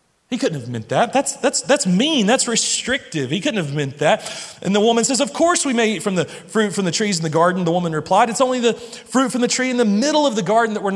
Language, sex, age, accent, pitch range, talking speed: English, male, 30-49, American, 180-250 Hz, 285 wpm